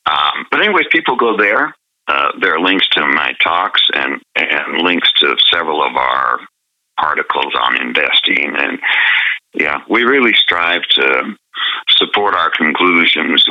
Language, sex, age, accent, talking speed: English, male, 60-79, American, 140 wpm